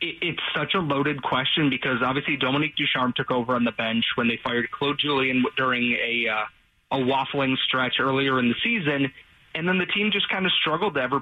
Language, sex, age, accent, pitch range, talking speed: English, male, 30-49, American, 120-145 Hz, 210 wpm